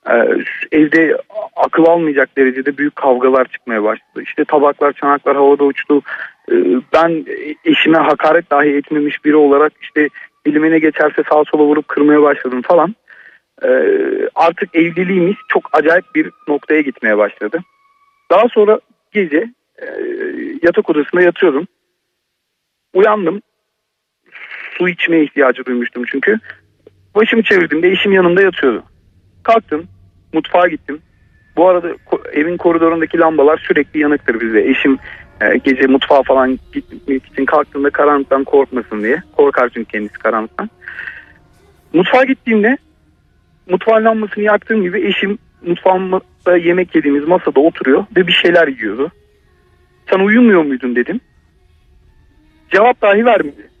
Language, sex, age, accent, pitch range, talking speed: Turkish, male, 40-59, native, 135-205 Hz, 120 wpm